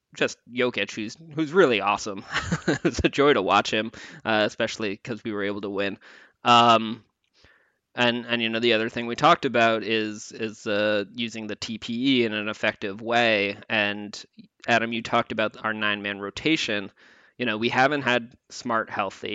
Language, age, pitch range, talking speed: English, 20-39, 105-125 Hz, 175 wpm